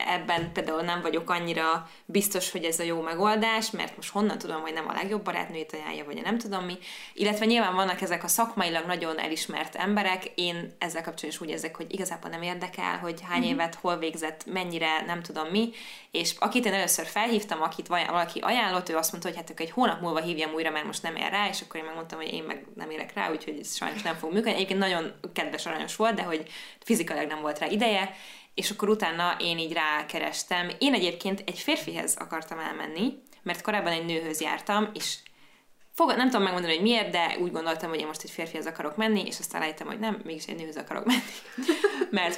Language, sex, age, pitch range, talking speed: Hungarian, female, 20-39, 165-205 Hz, 210 wpm